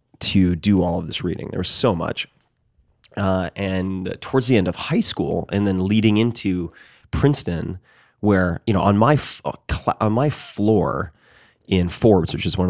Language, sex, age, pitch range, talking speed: English, male, 30-49, 90-110 Hz, 185 wpm